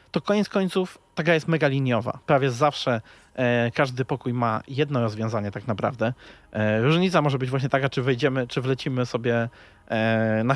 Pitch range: 120-145 Hz